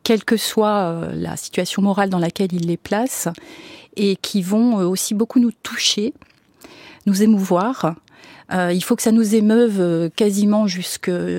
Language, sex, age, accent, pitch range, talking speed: French, female, 40-59, French, 180-225 Hz, 150 wpm